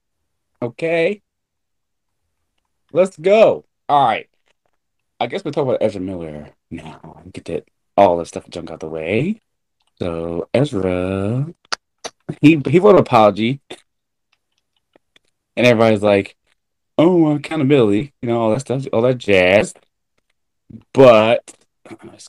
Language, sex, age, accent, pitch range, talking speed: English, male, 30-49, American, 95-130 Hz, 120 wpm